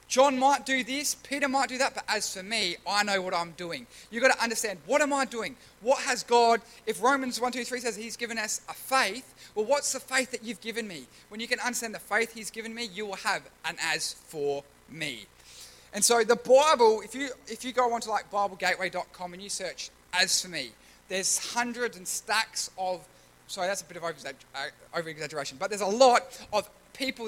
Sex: male